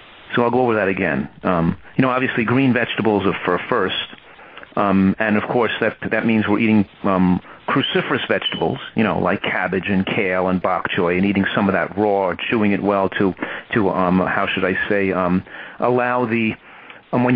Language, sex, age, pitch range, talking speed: English, male, 40-59, 105-130 Hz, 200 wpm